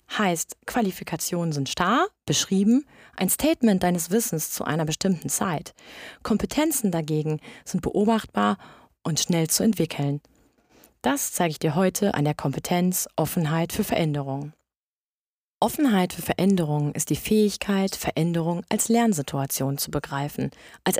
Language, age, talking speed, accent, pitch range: German, 30-49, 125 wpm, German, 160-210 Hz